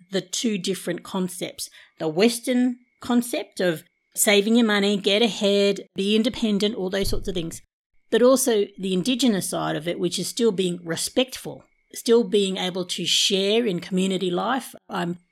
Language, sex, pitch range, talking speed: English, female, 185-215 Hz, 160 wpm